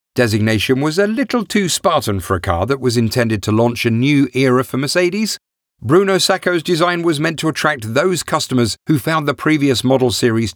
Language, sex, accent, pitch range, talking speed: English, male, British, 110-155 Hz, 195 wpm